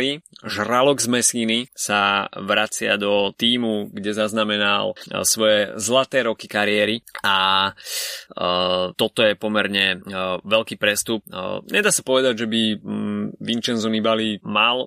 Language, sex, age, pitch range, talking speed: Slovak, male, 20-39, 105-115 Hz, 110 wpm